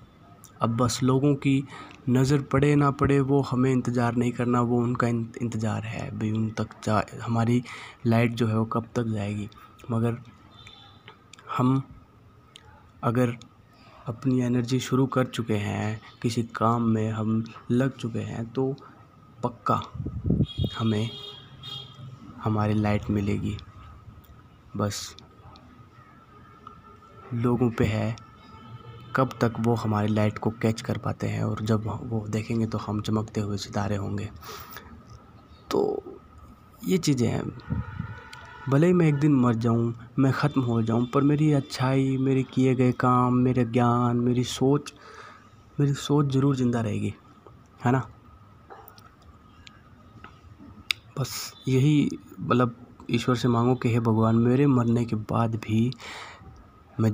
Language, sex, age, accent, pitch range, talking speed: Hindi, male, 20-39, native, 110-130 Hz, 130 wpm